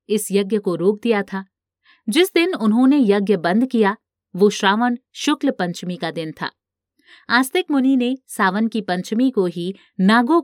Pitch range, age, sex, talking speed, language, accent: 185-260 Hz, 50-69, female, 160 wpm, Hindi, native